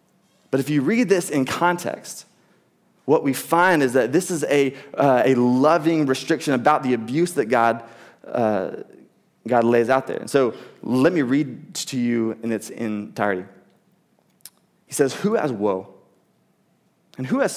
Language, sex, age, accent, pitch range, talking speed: English, male, 20-39, American, 120-180 Hz, 160 wpm